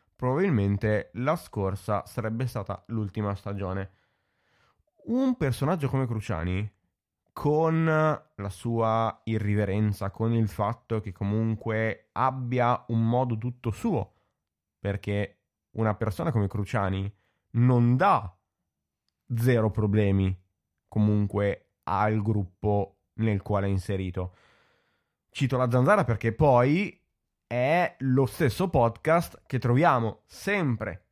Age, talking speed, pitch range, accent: 20-39, 100 wpm, 105-135 Hz, native